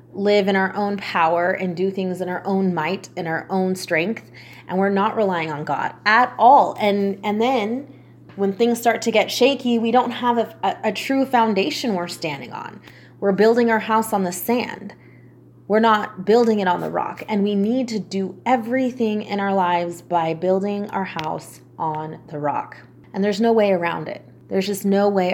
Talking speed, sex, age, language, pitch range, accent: 200 wpm, female, 20-39, English, 180-230 Hz, American